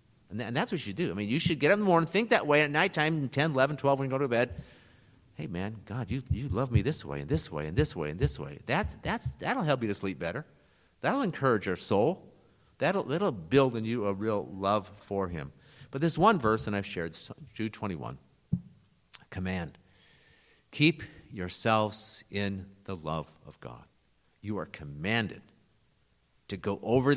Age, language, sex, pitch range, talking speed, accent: 50-69, English, male, 100-135 Hz, 200 wpm, American